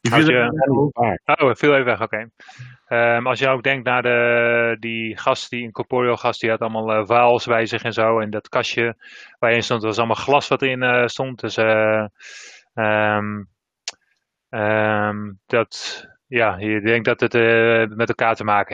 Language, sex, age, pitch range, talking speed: English, male, 20-39, 110-135 Hz, 190 wpm